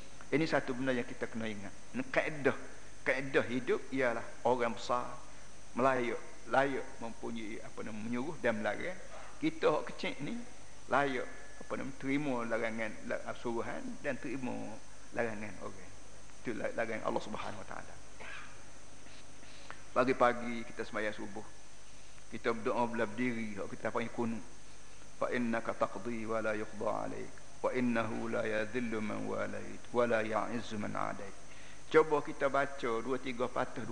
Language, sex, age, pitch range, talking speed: Malay, male, 50-69, 115-140 Hz, 145 wpm